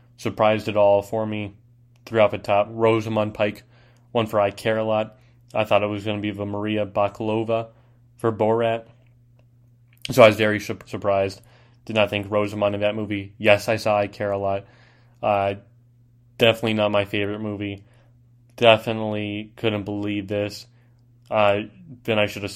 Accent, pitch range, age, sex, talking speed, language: American, 105-120 Hz, 20-39, male, 170 wpm, English